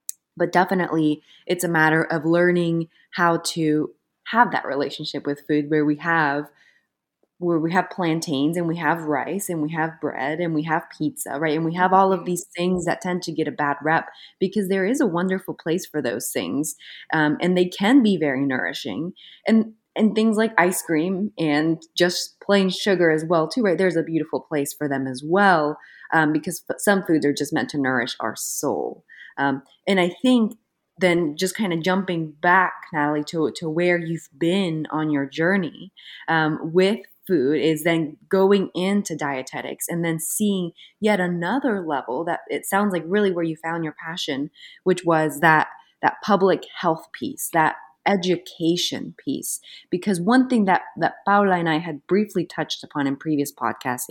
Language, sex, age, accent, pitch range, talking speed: Spanish, female, 20-39, American, 150-185 Hz, 185 wpm